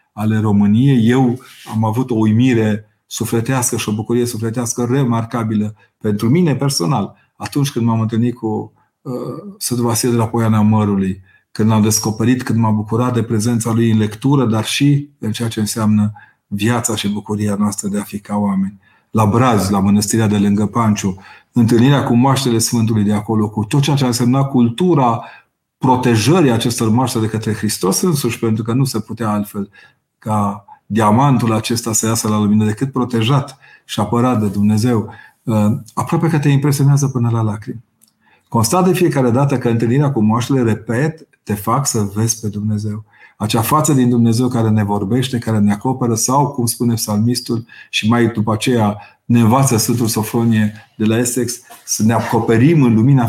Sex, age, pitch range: male, 40-59, 105-125 Hz